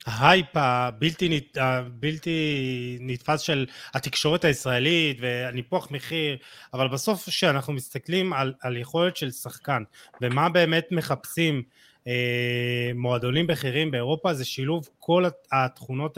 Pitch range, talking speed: 125-160 Hz, 110 wpm